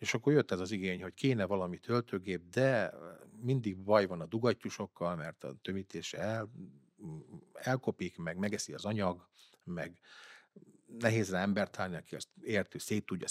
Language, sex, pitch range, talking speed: Hungarian, male, 95-115 Hz, 150 wpm